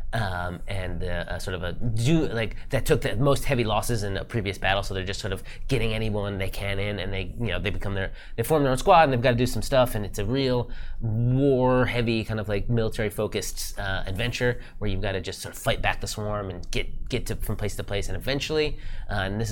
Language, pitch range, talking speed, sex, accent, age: English, 95-125 Hz, 245 wpm, male, American, 20-39